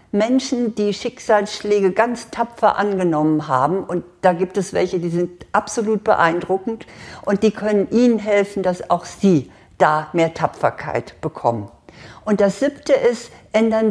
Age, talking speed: 60-79, 140 wpm